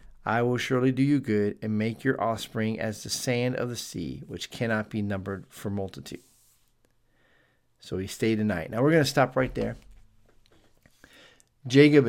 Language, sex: English, male